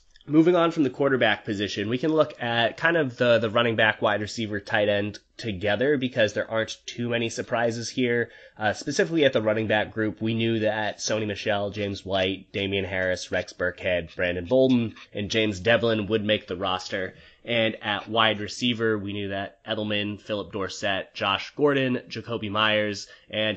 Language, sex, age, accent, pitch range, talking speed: English, male, 20-39, American, 95-115 Hz, 180 wpm